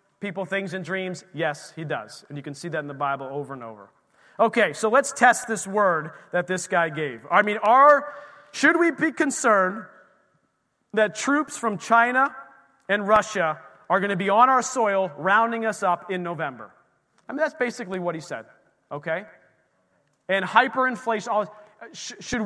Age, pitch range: 30-49, 195-255 Hz